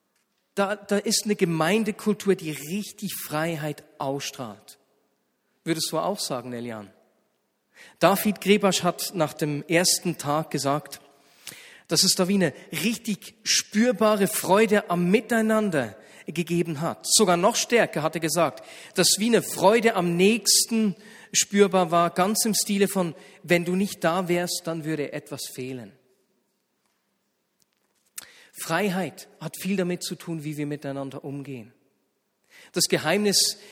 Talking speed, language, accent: 130 wpm, German, German